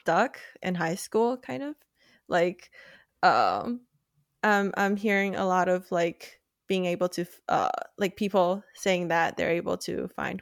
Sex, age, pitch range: female, 20-39, 170-200 Hz